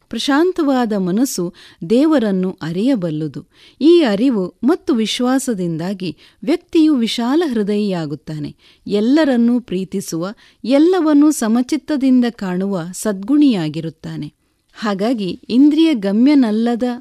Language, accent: Kannada, native